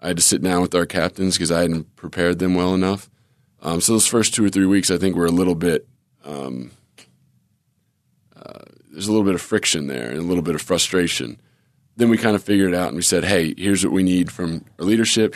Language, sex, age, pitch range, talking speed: English, male, 20-39, 80-95 Hz, 240 wpm